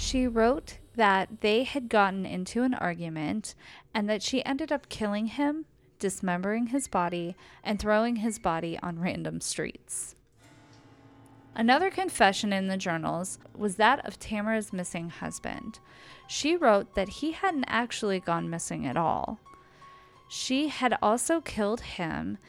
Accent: American